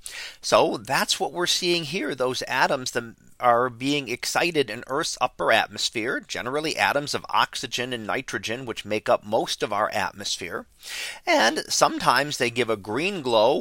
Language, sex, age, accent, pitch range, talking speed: English, male, 40-59, American, 125-175 Hz, 160 wpm